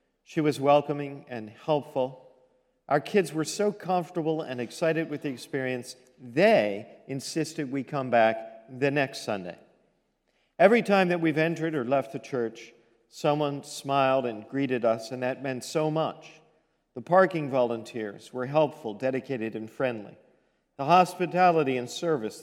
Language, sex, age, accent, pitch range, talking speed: English, male, 50-69, American, 125-160 Hz, 145 wpm